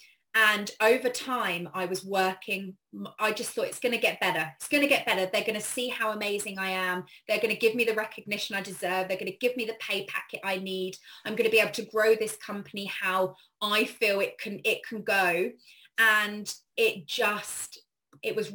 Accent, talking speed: British, 220 wpm